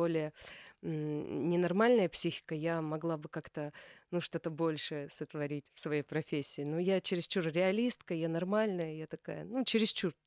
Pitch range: 160-205 Hz